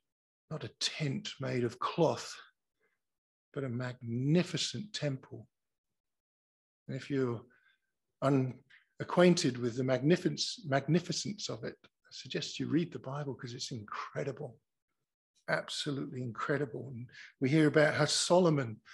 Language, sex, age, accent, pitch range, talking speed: English, male, 50-69, British, 140-190 Hz, 115 wpm